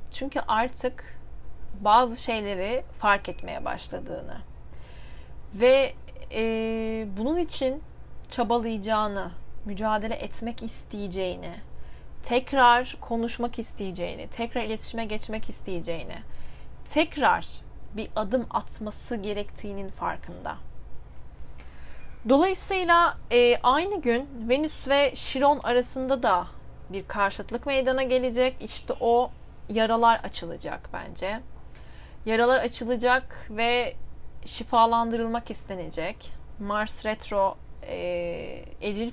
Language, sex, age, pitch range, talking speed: Turkish, female, 30-49, 200-245 Hz, 85 wpm